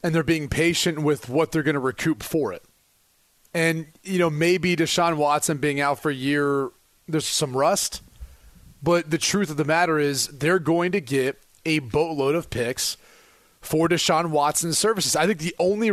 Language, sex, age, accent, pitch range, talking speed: English, male, 30-49, American, 145-190 Hz, 185 wpm